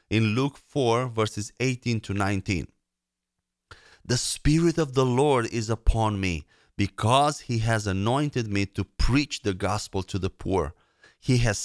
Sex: male